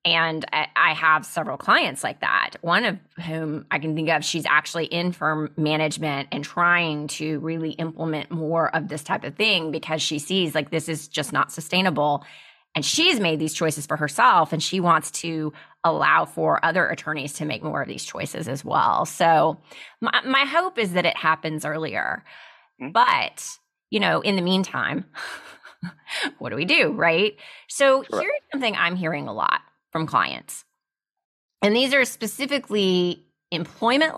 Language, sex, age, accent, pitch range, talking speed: English, female, 20-39, American, 155-215 Hz, 170 wpm